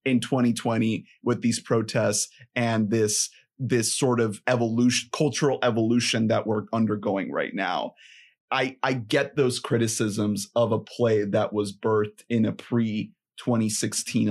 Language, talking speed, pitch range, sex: English, 140 wpm, 115-140 Hz, male